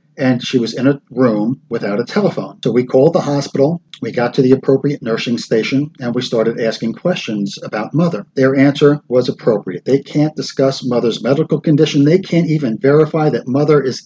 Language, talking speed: English, 190 wpm